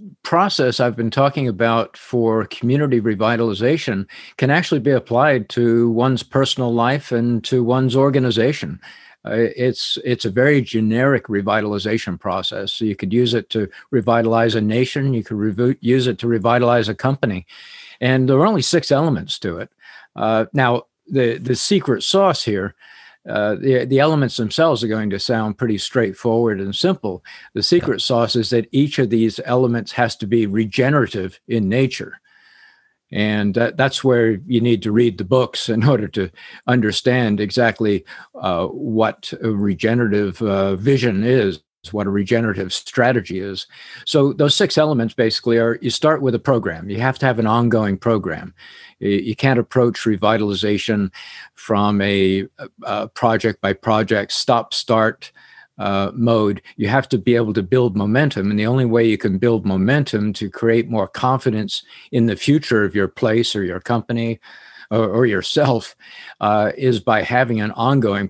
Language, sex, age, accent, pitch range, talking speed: English, male, 50-69, American, 105-130 Hz, 165 wpm